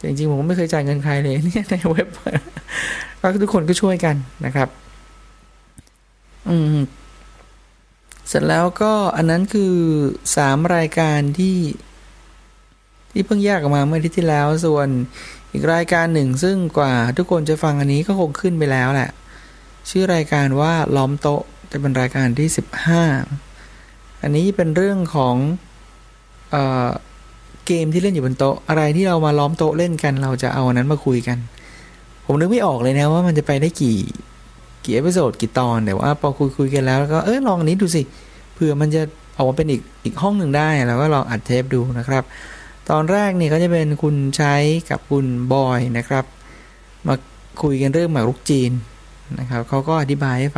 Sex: male